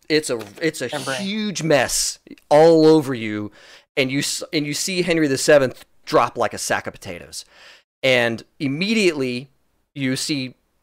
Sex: male